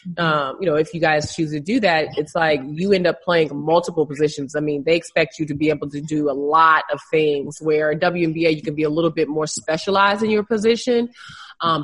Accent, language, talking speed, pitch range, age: American, English, 240 wpm, 155-180 Hz, 20-39